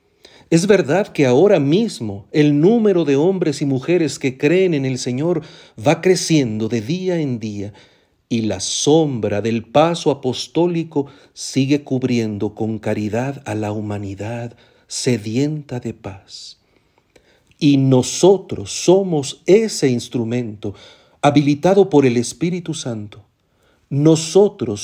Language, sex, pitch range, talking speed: Spanish, male, 115-155 Hz, 120 wpm